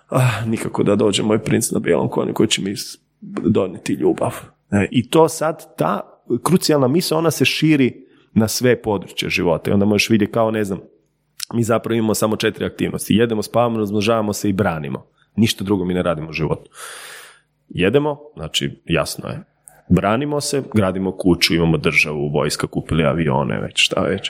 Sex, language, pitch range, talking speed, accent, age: male, Croatian, 95-140 Hz, 170 wpm, native, 30-49